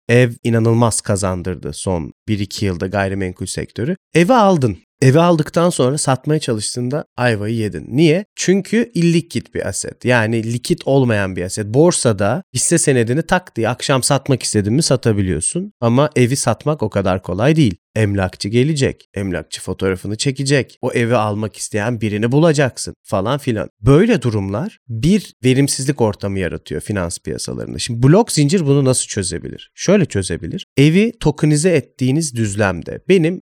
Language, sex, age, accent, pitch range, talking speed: Turkish, male, 30-49, native, 110-150 Hz, 140 wpm